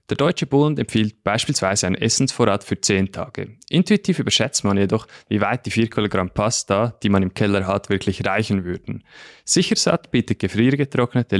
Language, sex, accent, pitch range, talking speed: German, male, Swiss, 100-125 Hz, 165 wpm